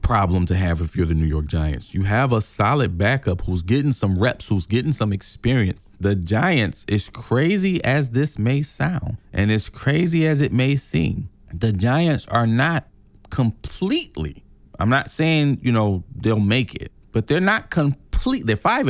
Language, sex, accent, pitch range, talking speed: English, male, American, 100-130 Hz, 180 wpm